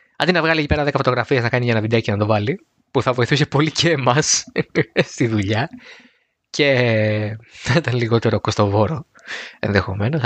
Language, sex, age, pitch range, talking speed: Greek, male, 20-39, 115-155 Hz, 160 wpm